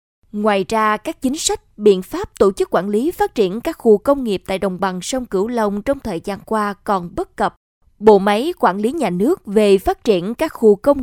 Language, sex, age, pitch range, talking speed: Vietnamese, female, 20-39, 195-255 Hz, 230 wpm